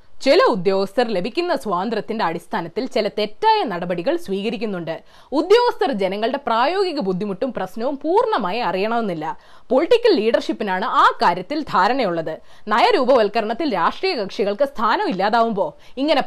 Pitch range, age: 230-370 Hz, 20-39